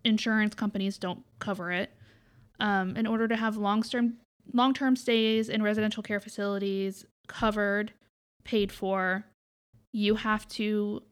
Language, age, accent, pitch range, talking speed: English, 20-39, American, 185-215 Hz, 120 wpm